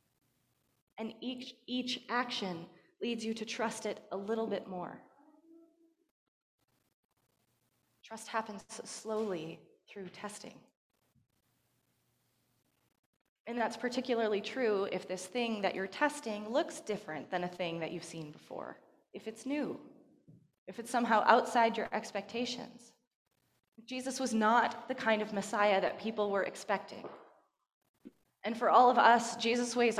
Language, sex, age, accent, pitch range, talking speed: English, female, 20-39, American, 200-255 Hz, 130 wpm